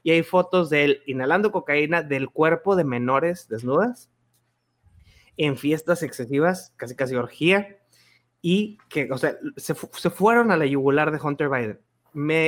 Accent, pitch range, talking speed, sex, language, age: Mexican, 130-170 Hz, 155 wpm, male, Spanish, 30-49